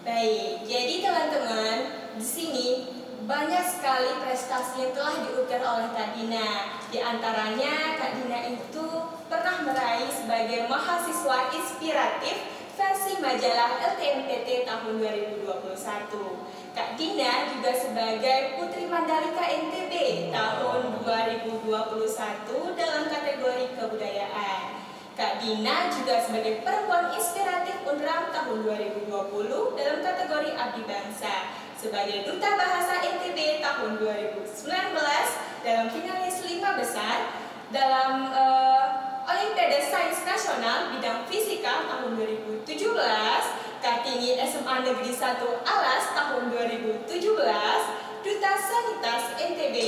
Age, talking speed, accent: 20-39, 100 wpm, native